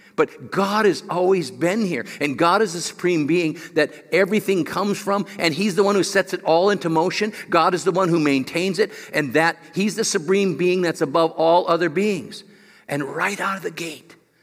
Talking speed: 210 wpm